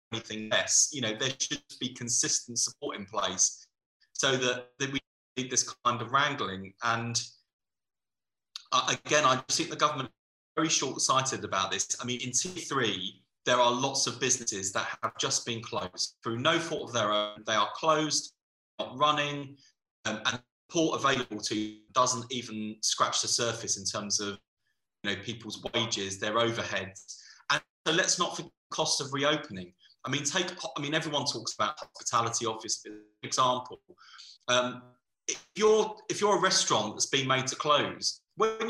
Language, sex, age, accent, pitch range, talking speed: English, male, 20-39, British, 120-160 Hz, 165 wpm